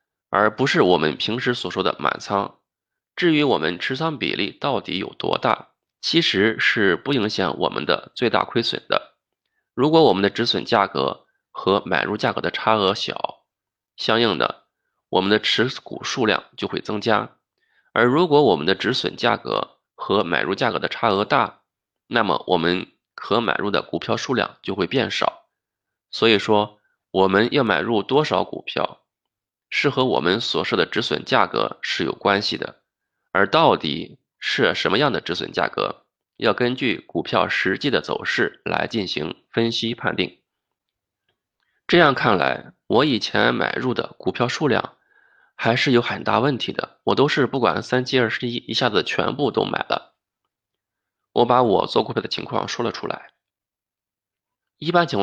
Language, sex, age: Chinese, male, 20-39